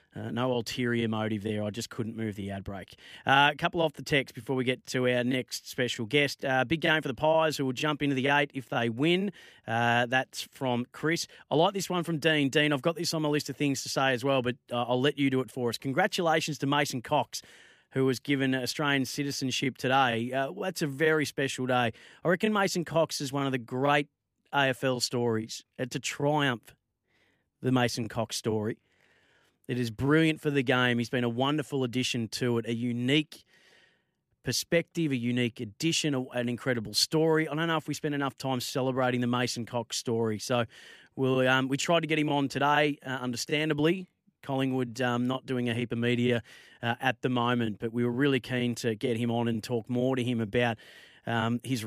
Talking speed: 210 wpm